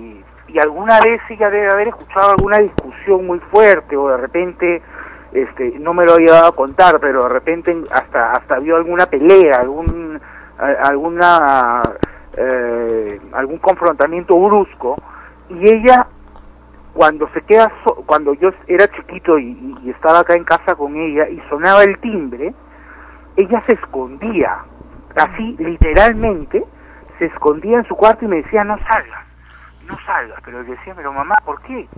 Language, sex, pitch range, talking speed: Spanish, male, 155-220 Hz, 150 wpm